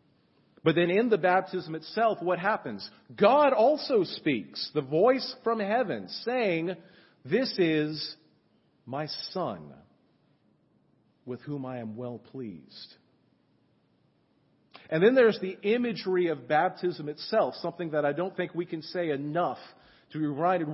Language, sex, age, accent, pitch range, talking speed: English, male, 40-59, American, 145-185 Hz, 135 wpm